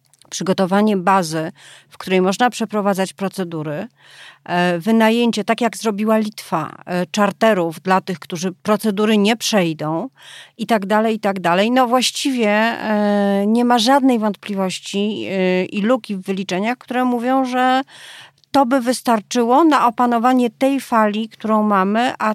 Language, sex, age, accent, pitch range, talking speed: Polish, female, 40-59, native, 190-230 Hz, 130 wpm